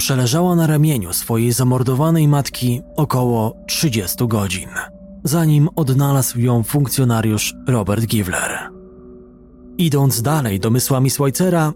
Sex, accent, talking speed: male, native, 95 wpm